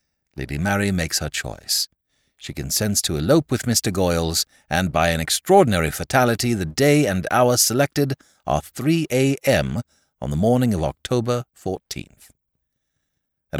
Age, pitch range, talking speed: 60-79, 80-130 Hz, 140 wpm